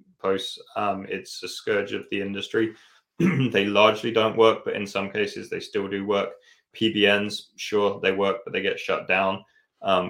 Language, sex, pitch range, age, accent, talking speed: English, male, 95-115 Hz, 20-39, British, 180 wpm